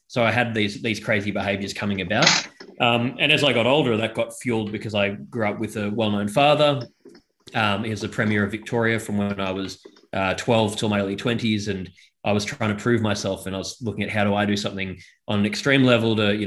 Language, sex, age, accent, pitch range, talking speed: English, male, 20-39, Australian, 100-115 Hz, 240 wpm